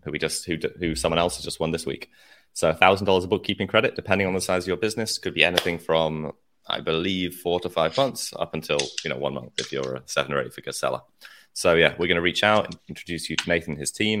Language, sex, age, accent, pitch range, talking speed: English, male, 20-39, British, 80-105 Hz, 260 wpm